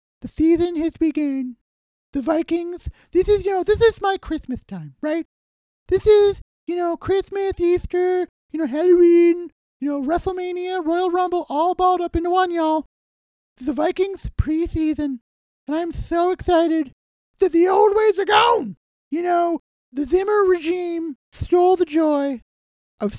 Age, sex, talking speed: 30-49, male, 150 wpm